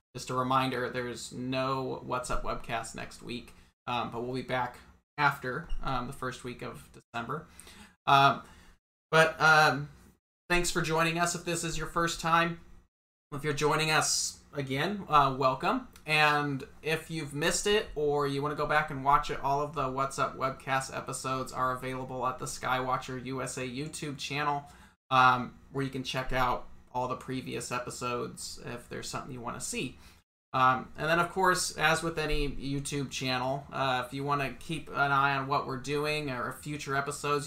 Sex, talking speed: male, 180 wpm